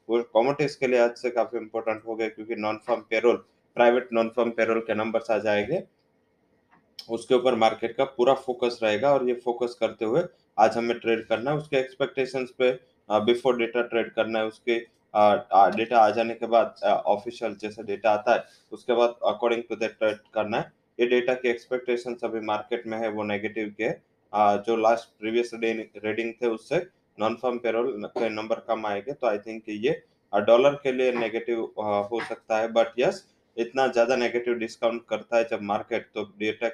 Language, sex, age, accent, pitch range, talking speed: English, male, 20-39, Indian, 110-120 Hz, 165 wpm